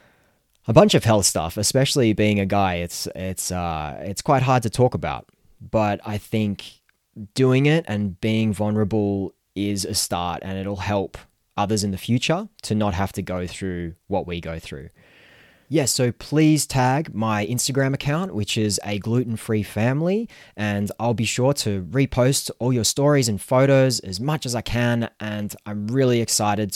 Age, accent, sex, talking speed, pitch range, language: 20-39, Australian, male, 170 wpm, 100-130 Hz, English